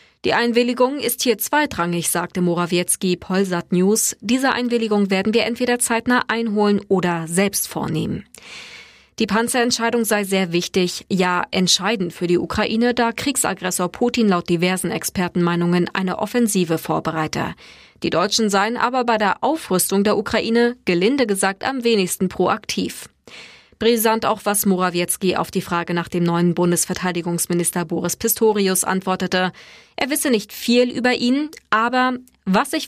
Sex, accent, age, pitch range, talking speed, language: female, German, 20-39, 175-230 Hz, 135 wpm, German